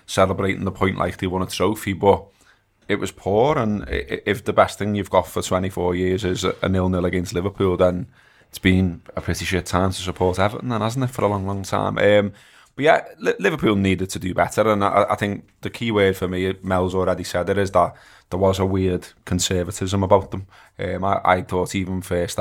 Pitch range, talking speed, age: 90-105 Hz, 215 wpm, 20-39